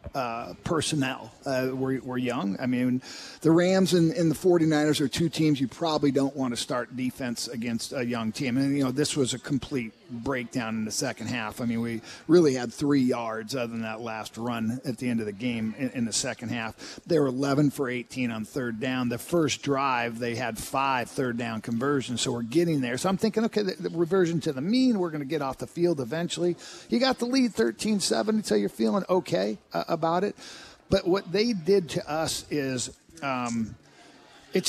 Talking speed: 215 wpm